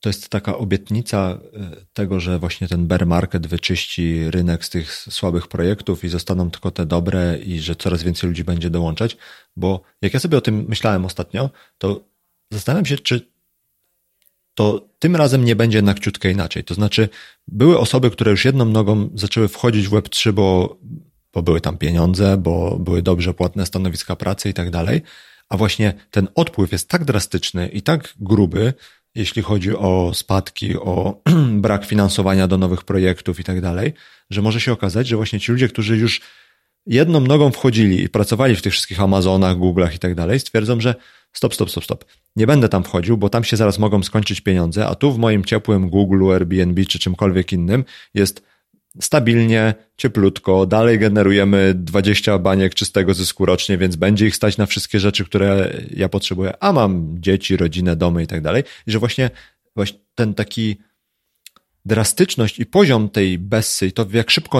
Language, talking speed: Polish, 175 wpm